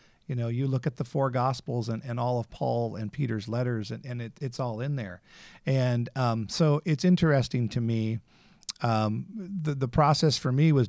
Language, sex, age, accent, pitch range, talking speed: English, male, 50-69, American, 110-135 Hz, 205 wpm